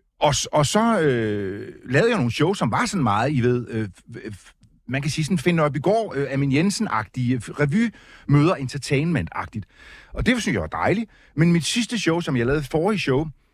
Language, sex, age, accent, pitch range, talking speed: Danish, male, 60-79, native, 120-180 Hz, 185 wpm